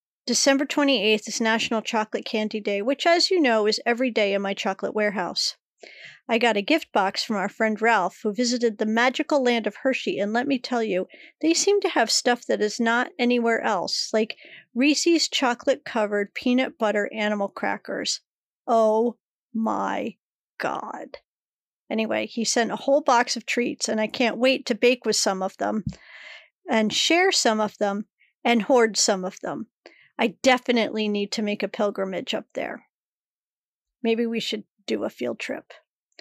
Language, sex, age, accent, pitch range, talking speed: English, female, 40-59, American, 220-280 Hz, 170 wpm